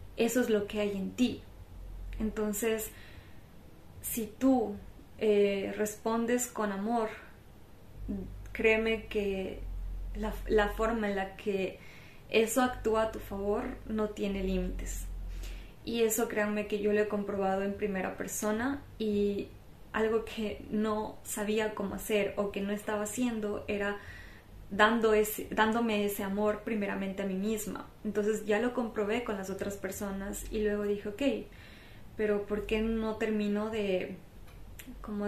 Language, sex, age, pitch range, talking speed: Spanish, female, 20-39, 190-215 Hz, 140 wpm